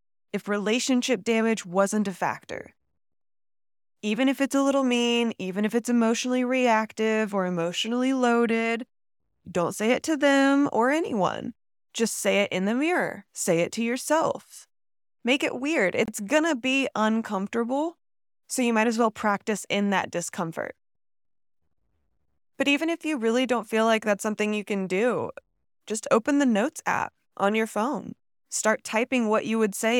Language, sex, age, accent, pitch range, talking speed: English, female, 20-39, American, 205-255 Hz, 160 wpm